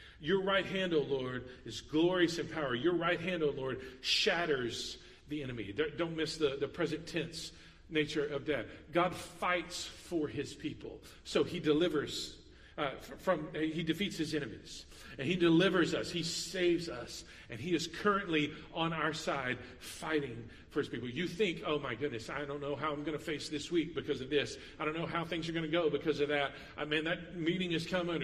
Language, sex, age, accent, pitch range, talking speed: English, male, 40-59, American, 130-165 Hz, 200 wpm